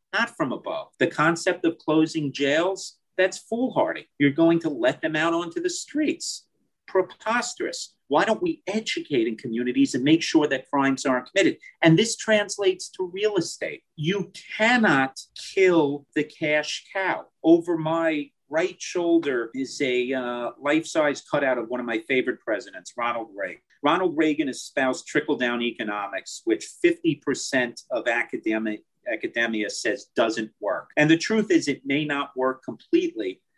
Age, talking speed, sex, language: 40-59, 150 wpm, male, English